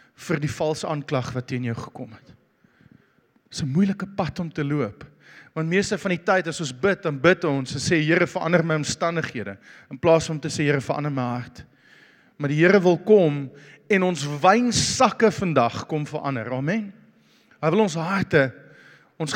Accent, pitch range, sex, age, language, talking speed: Dutch, 145-185 Hz, male, 40-59, English, 185 wpm